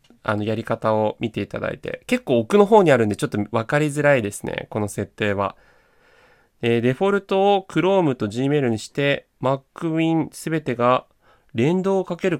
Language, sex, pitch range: Japanese, male, 105-150 Hz